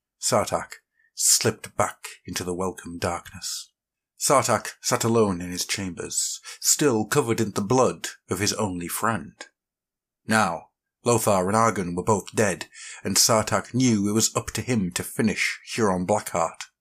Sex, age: male, 50-69